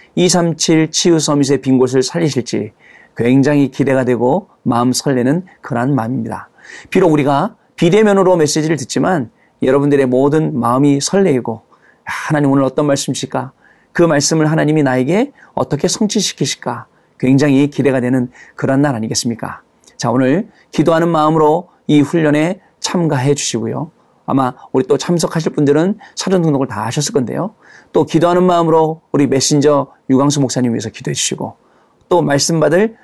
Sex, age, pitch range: male, 40-59, 130-170 Hz